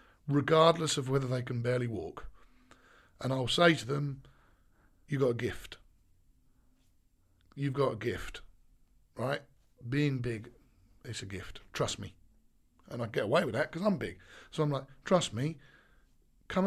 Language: English